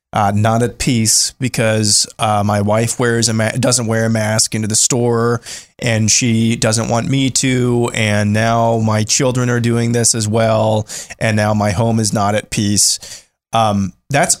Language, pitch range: English, 105-125 Hz